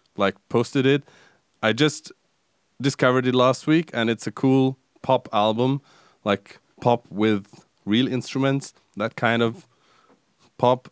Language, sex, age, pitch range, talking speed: English, male, 20-39, 105-130 Hz, 130 wpm